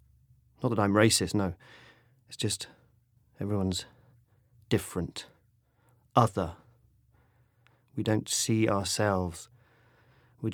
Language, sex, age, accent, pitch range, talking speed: English, male, 30-49, British, 90-115 Hz, 85 wpm